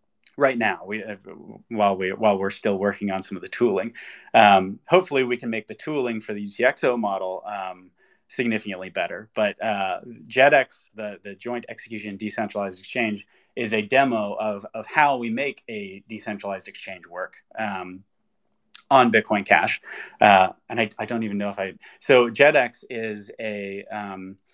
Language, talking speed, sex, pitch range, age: English, 165 wpm, male, 100-115 Hz, 30-49